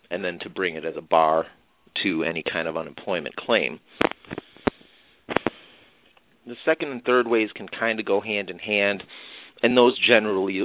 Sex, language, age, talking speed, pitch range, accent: male, English, 30-49, 165 wpm, 95-110 Hz, American